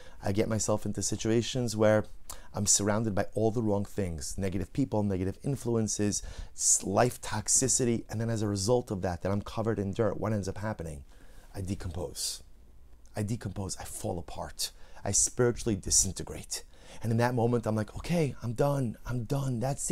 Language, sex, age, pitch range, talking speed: English, male, 30-49, 95-125 Hz, 170 wpm